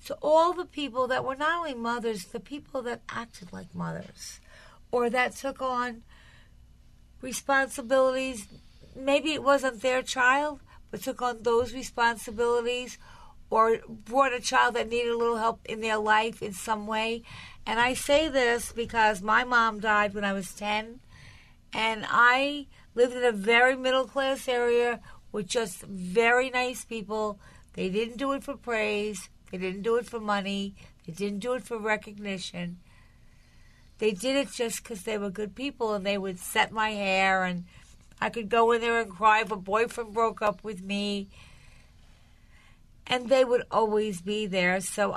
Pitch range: 210-245 Hz